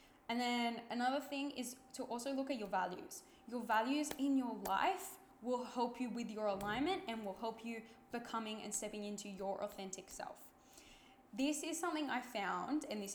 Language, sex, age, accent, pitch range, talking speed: English, female, 10-29, Australian, 205-270 Hz, 185 wpm